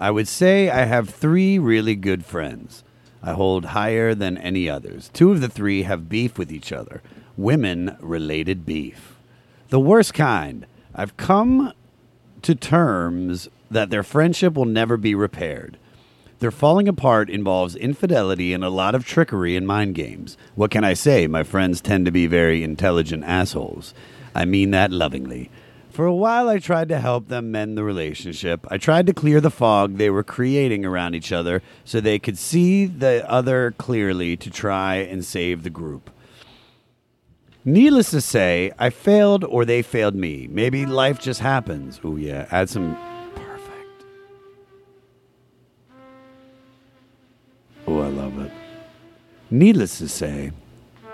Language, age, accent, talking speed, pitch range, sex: English, 40-59, American, 155 wpm, 95-135 Hz, male